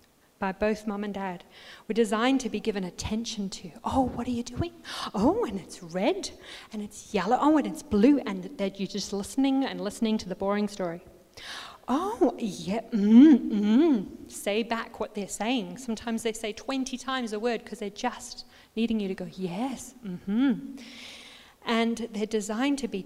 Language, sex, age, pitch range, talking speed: English, female, 40-59, 190-235 Hz, 180 wpm